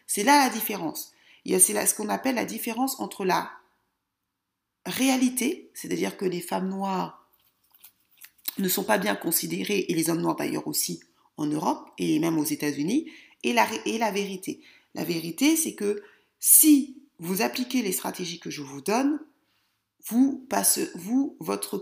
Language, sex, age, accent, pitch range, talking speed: French, female, 40-59, French, 195-270 Hz, 160 wpm